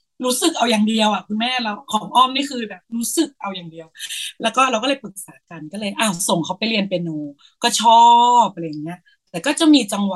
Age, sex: 20-39, female